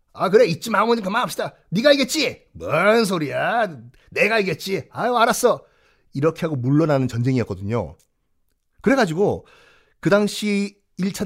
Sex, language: male, Korean